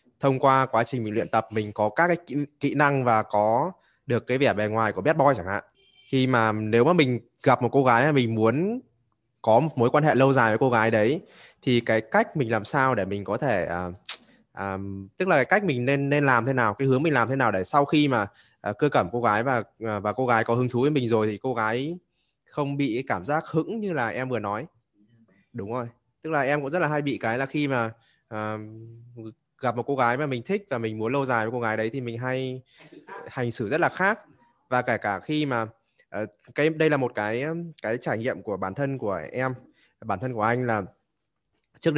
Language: Vietnamese